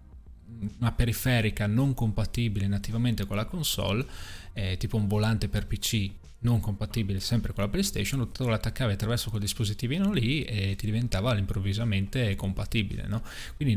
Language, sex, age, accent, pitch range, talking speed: Italian, male, 20-39, native, 100-120 Hz, 140 wpm